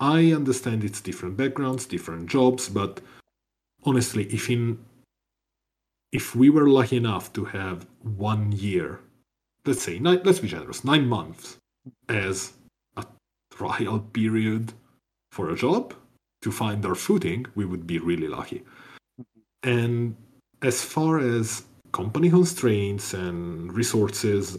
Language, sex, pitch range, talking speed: English, male, 95-125 Hz, 125 wpm